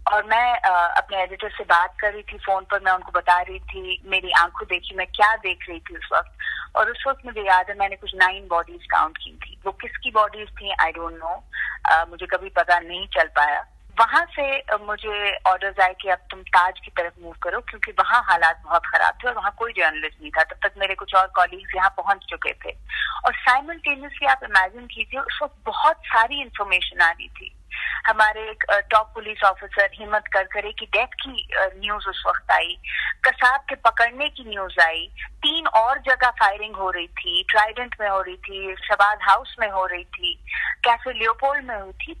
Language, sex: Hindi, female